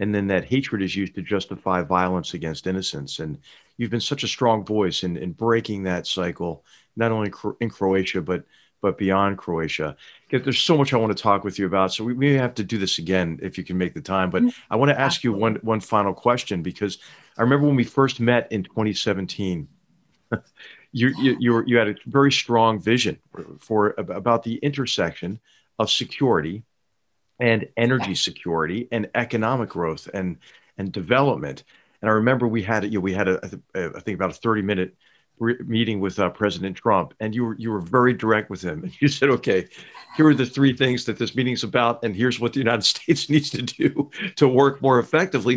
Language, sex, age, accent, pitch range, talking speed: English, male, 50-69, American, 100-125 Hz, 210 wpm